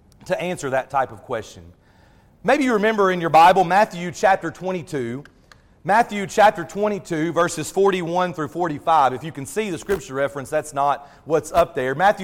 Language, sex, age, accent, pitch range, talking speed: English, male, 40-59, American, 150-210 Hz, 170 wpm